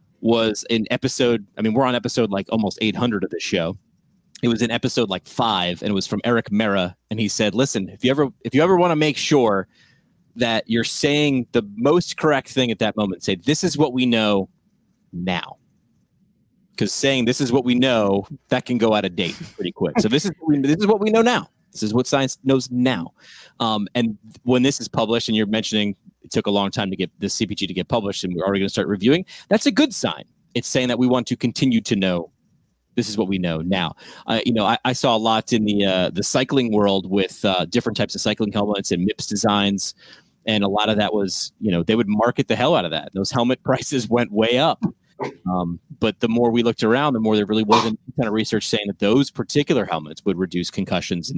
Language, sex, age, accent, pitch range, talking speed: English, male, 30-49, American, 100-130 Hz, 240 wpm